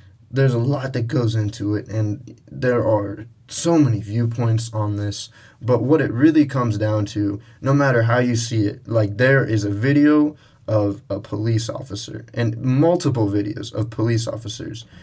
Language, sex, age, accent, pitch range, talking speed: English, male, 20-39, American, 105-125 Hz, 170 wpm